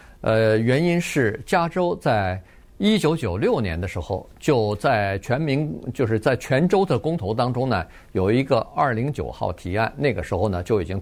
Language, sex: Chinese, male